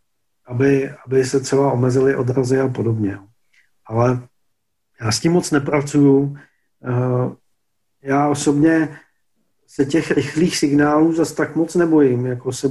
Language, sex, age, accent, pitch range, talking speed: Czech, male, 40-59, native, 125-150 Hz, 125 wpm